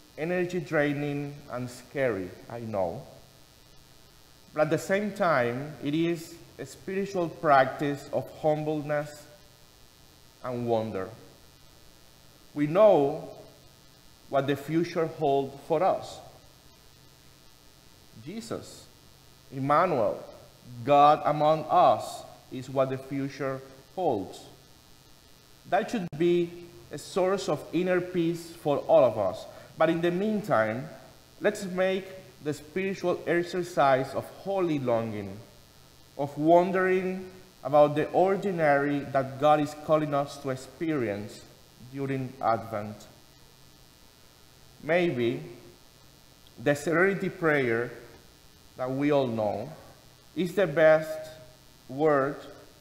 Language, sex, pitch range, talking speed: English, male, 130-165 Hz, 100 wpm